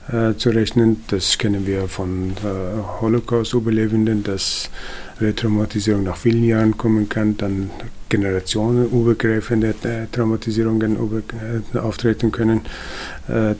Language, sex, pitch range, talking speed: German, male, 100-110 Hz, 110 wpm